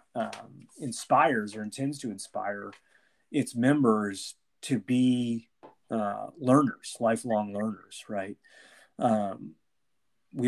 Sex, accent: male, American